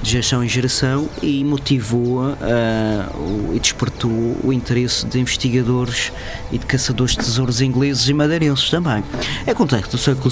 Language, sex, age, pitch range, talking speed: Portuguese, male, 20-39, 115-140 Hz, 165 wpm